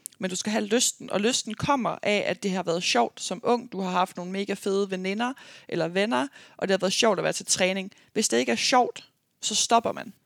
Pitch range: 185-225 Hz